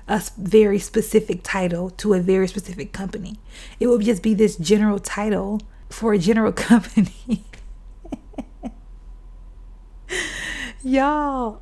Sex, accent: female, American